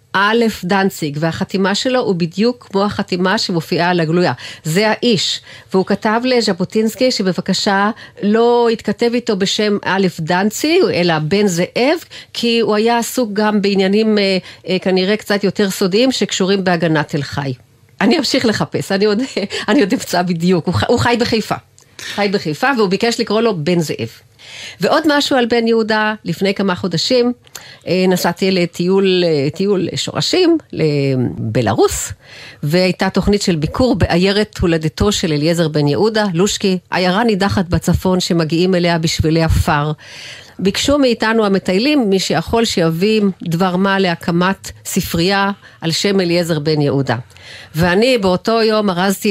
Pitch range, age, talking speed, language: 170-215 Hz, 40-59, 135 wpm, Hebrew